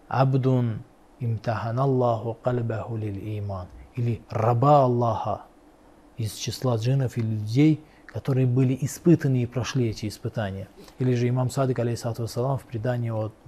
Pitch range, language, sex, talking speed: 115-145 Hz, Russian, male, 120 wpm